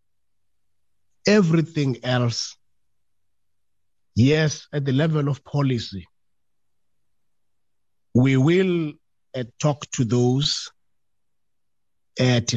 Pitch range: 105-140 Hz